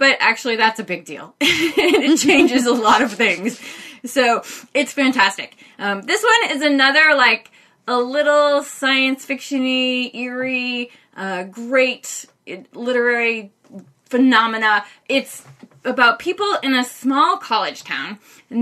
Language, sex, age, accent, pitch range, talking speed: English, female, 20-39, American, 195-260 Hz, 125 wpm